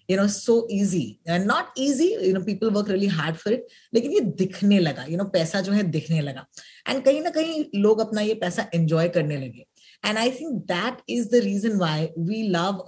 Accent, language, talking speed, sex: native, Hindi, 220 wpm, female